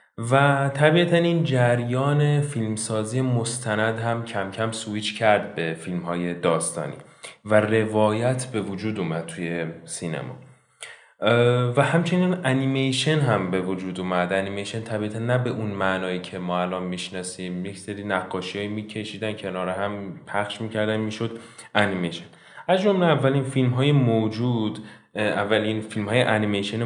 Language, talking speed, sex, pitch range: Persian, 130 wpm, male, 95-115 Hz